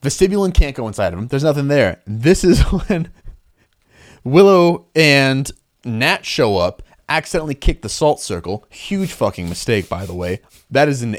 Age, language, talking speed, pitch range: 30-49, English, 165 wpm, 115-185 Hz